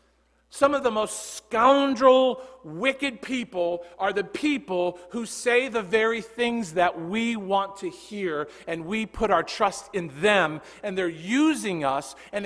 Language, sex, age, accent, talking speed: English, male, 40-59, American, 155 wpm